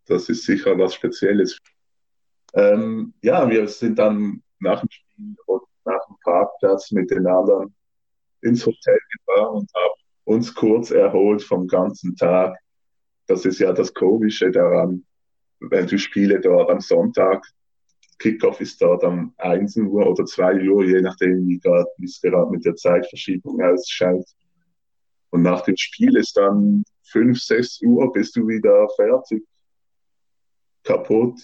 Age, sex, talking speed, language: 20-39, male, 145 wpm, German